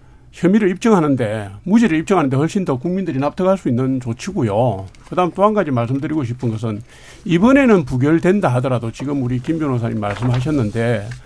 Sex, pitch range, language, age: male, 125-190 Hz, Korean, 50-69